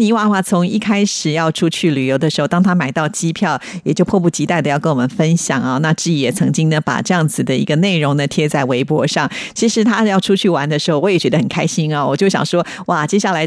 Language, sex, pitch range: Chinese, female, 155-195 Hz